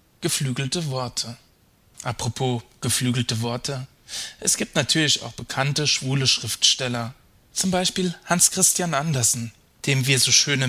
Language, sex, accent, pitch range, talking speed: German, male, German, 120-145 Hz, 120 wpm